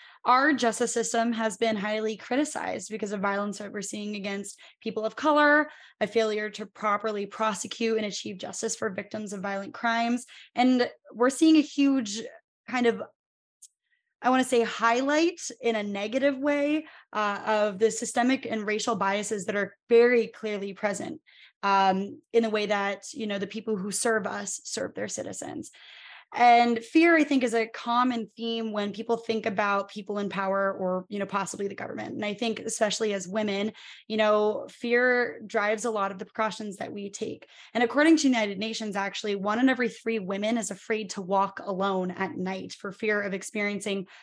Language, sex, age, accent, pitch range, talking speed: English, female, 20-39, American, 205-240 Hz, 180 wpm